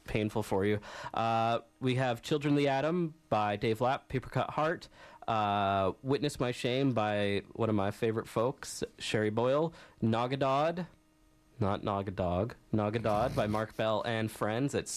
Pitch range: 105-140 Hz